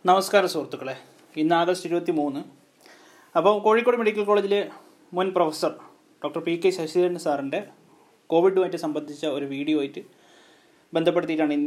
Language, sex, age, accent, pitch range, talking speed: Malayalam, male, 30-49, native, 160-225 Hz, 120 wpm